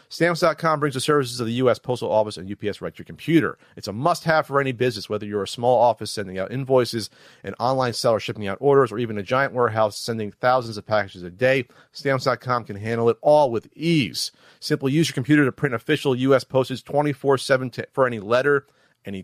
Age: 40-59